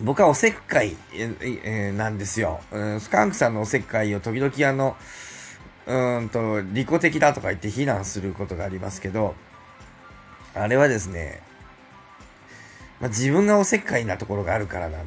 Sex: male